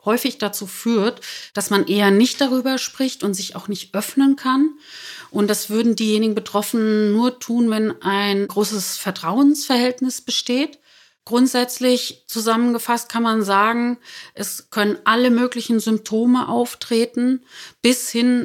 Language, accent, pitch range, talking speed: German, German, 200-250 Hz, 130 wpm